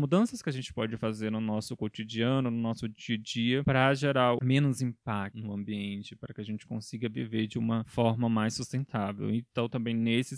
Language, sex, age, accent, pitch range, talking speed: Portuguese, male, 20-39, Brazilian, 110-120 Hz, 195 wpm